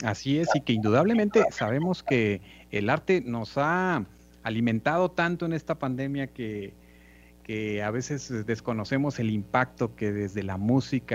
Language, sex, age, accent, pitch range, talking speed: Spanish, male, 40-59, Mexican, 105-145 Hz, 145 wpm